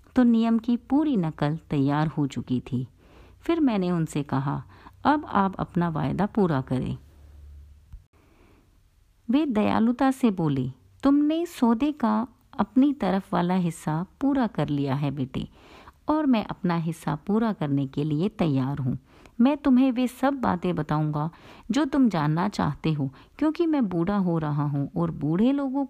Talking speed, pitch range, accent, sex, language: 150 wpm, 150-230 Hz, native, female, Hindi